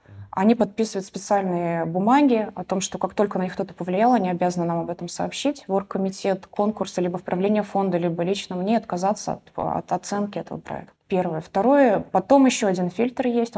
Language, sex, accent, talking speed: Russian, female, native, 180 wpm